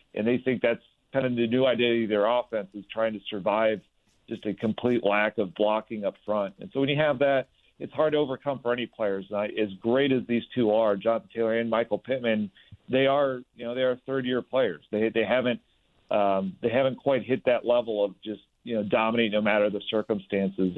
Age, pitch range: 50-69, 105-125 Hz